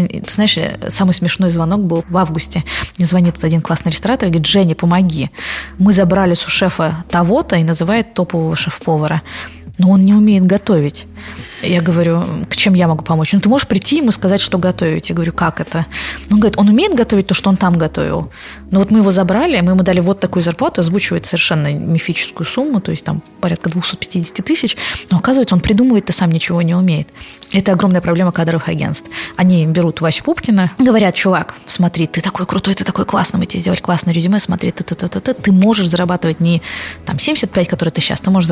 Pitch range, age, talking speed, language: 165-195 Hz, 20-39, 195 wpm, Russian